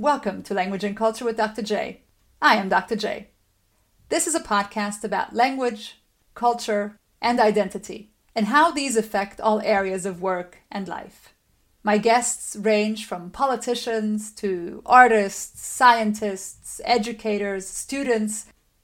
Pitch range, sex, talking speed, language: 205-240 Hz, female, 130 wpm, English